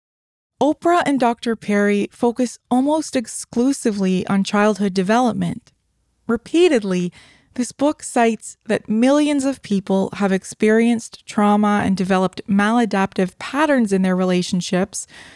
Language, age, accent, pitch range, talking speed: English, 20-39, American, 195-250 Hz, 110 wpm